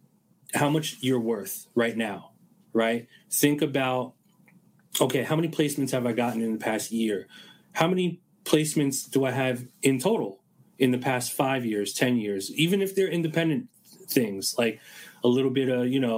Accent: American